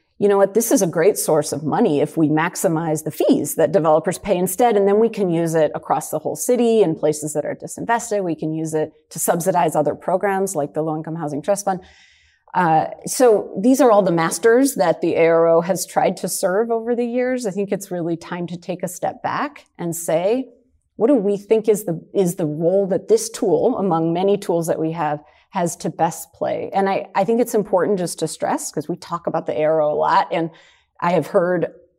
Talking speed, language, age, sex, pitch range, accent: 225 wpm, English, 30-49, female, 160-200 Hz, American